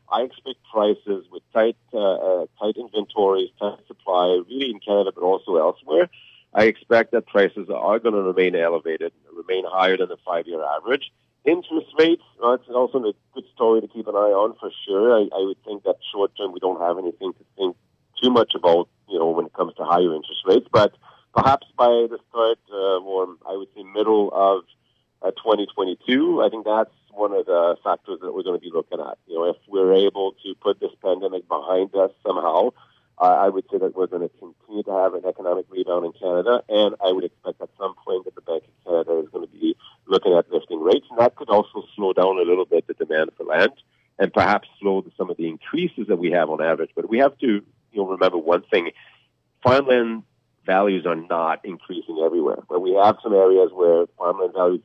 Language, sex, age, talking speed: English, male, 40-59, 210 wpm